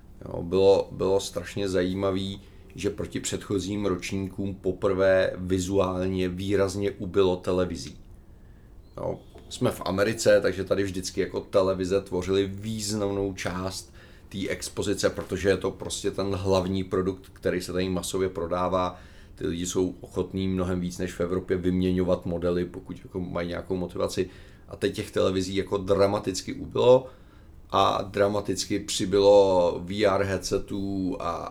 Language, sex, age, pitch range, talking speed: Czech, male, 30-49, 90-100 Hz, 125 wpm